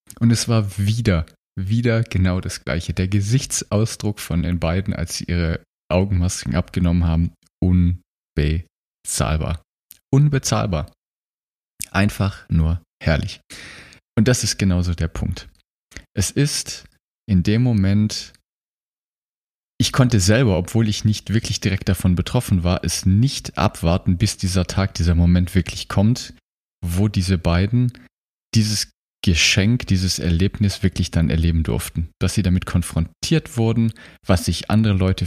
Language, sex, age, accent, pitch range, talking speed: German, male, 30-49, German, 85-110 Hz, 130 wpm